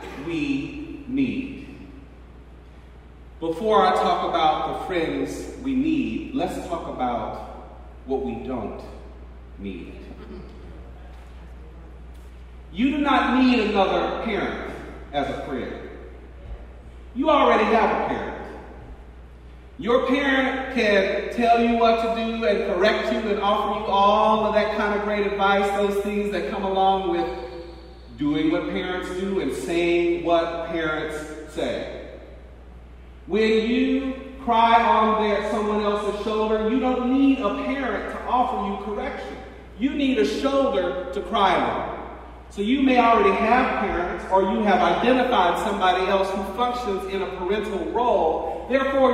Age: 40-59